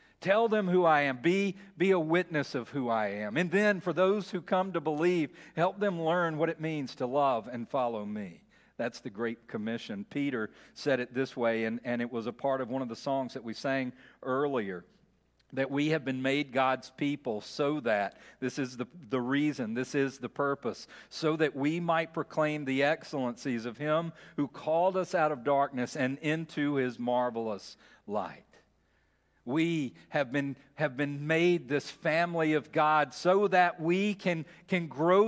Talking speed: 185 wpm